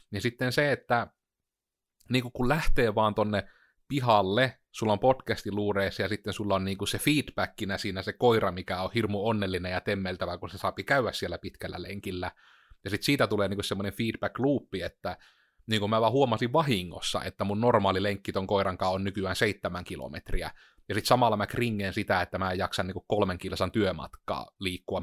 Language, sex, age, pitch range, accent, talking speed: Finnish, male, 30-49, 95-115 Hz, native, 180 wpm